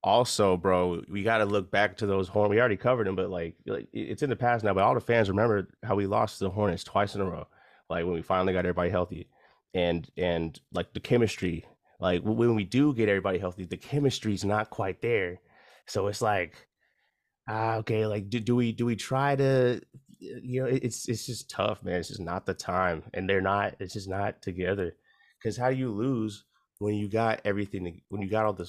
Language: English